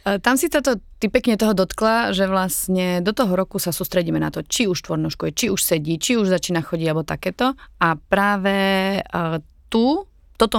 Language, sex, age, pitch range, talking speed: Slovak, female, 30-49, 160-195 Hz, 185 wpm